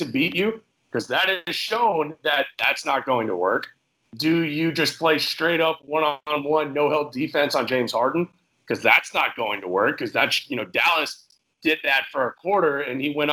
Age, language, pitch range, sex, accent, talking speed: 30-49, English, 140-180 Hz, male, American, 210 wpm